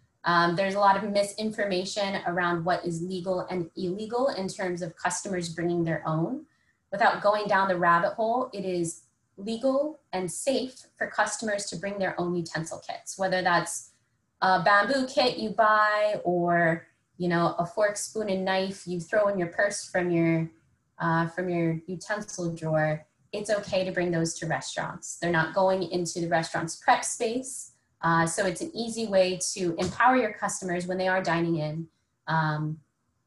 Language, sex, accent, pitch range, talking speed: English, female, American, 165-210 Hz, 175 wpm